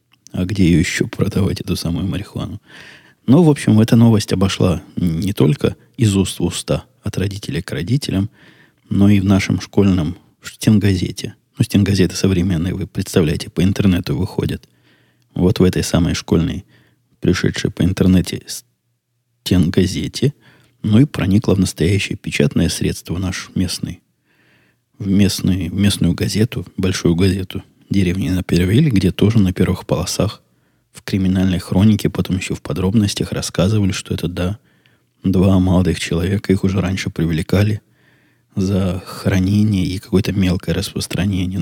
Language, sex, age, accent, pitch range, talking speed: Russian, male, 20-39, native, 90-105 Hz, 135 wpm